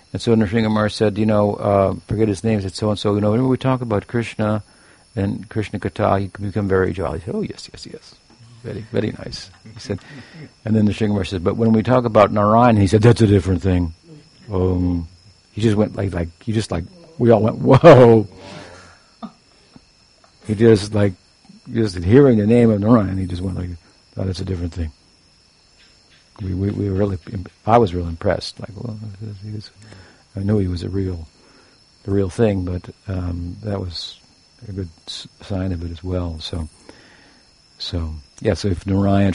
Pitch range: 90-110 Hz